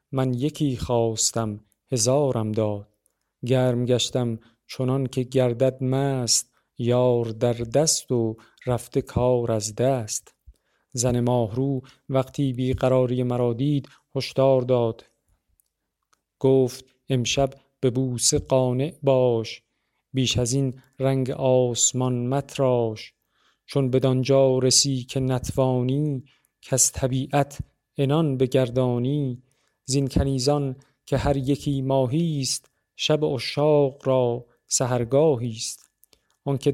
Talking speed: 100 wpm